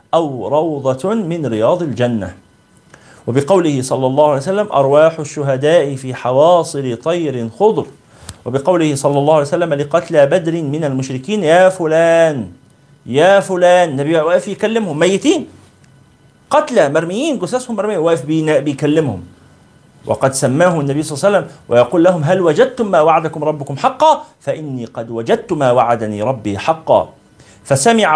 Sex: male